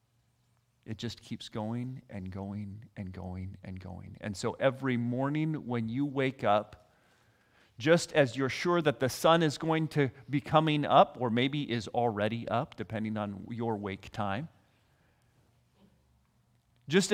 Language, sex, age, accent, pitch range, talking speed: English, male, 40-59, American, 115-195 Hz, 145 wpm